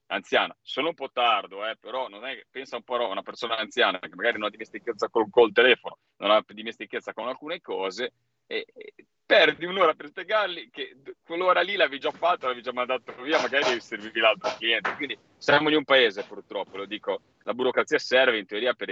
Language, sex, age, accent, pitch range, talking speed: Italian, male, 30-49, native, 120-175 Hz, 205 wpm